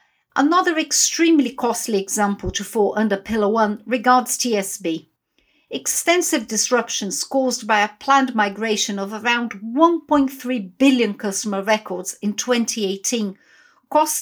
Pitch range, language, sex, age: 215-280 Hz, English, female, 50-69